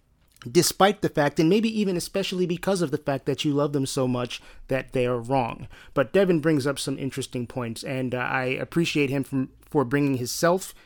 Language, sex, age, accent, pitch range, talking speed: English, male, 30-49, American, 135-175 Hz, 205 wpm